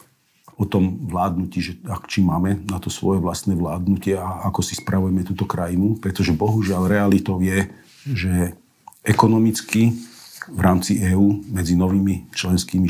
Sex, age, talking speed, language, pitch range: male, 50-69, 140 wpm, Slovak, 90-100 Hz